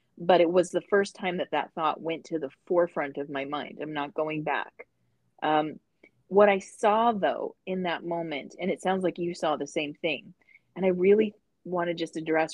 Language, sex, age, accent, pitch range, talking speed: English, female, 30-49, American, 155-190 Hz, 210 wpm